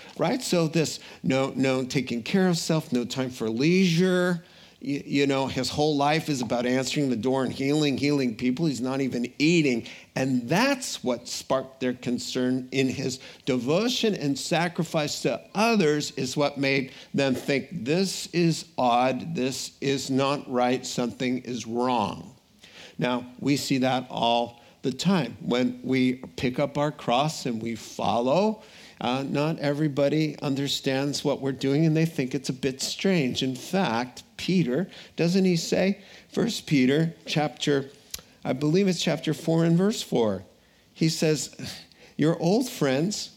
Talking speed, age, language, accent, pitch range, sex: 155 wpm, 50-69, English, American, 130-170 Hz, male